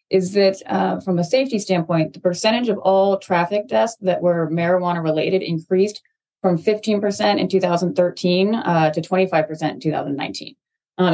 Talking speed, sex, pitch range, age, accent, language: 145 wpm, female, 160-190 Hz, 30-49, American, English